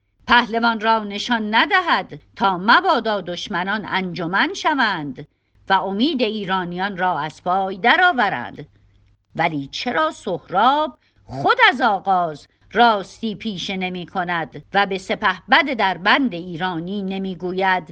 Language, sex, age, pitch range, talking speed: Persian, female, 50-69, 165-230 Hz, 105 wpm